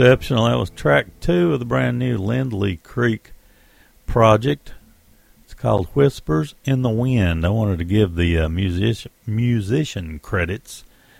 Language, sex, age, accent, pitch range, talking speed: English, male, 60-79, American, 95-130 Hz, 145 wpm